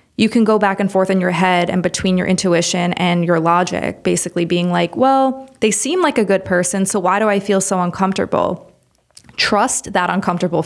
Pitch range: 180-215 Hz